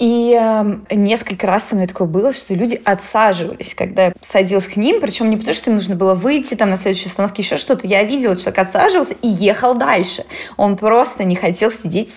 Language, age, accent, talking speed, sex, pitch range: Russian, 20-39, native, 200 wpm, female, 185-220 Hz